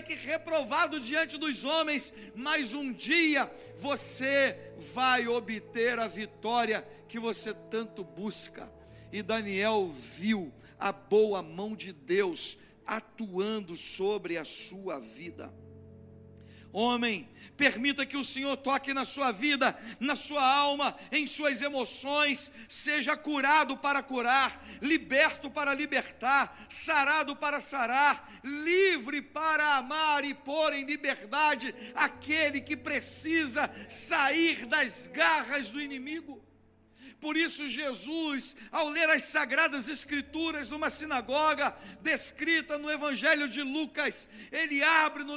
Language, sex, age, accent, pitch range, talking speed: Portuguese, male, 50-69, Brazilian, 245-310 Hz, 115 wpm